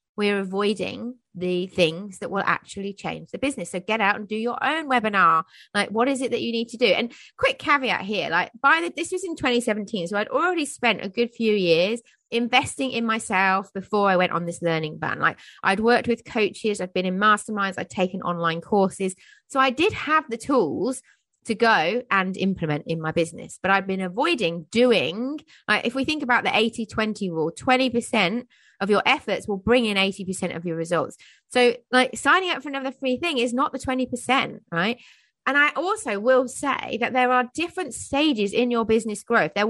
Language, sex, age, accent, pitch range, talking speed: English, female, 30-49, British, 195-255 Hz, 200 wpm